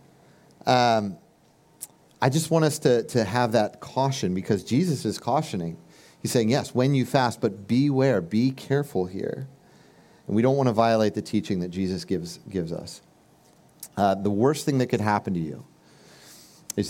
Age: 40-59